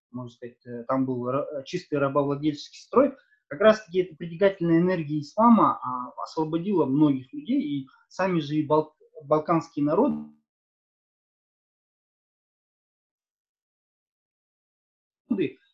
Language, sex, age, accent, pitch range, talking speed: Russian, male, 20-39, native, 135-200 Hz, 90 wpm